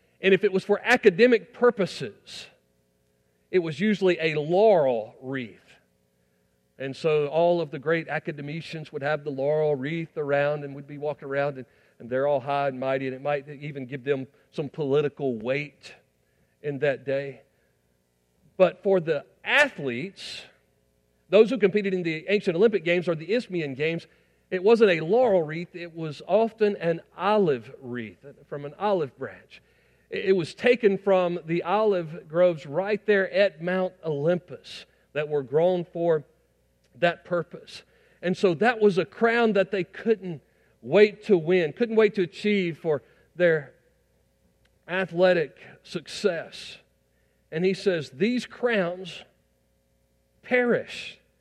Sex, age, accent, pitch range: male, 40-59, American, 135-195 Hz